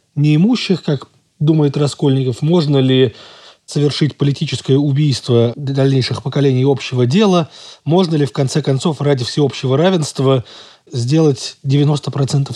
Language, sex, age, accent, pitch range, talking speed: Russian, male, 20-39, native, 130-155 Hz, 105 wpm